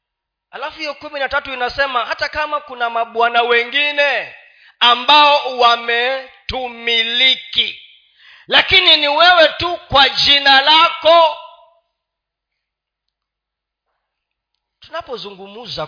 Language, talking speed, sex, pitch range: Swahili, 70 wpm, male, 225-310 Hz